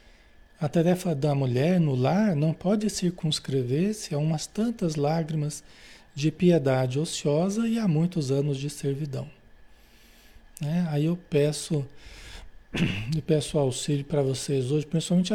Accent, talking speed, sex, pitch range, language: Brazilian, 120 wpm, male, 145-190 Hz, Portuguese